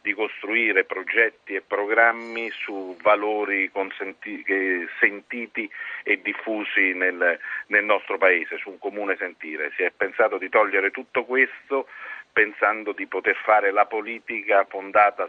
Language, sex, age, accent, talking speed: Italian, male, 40-59, native, 125 wpm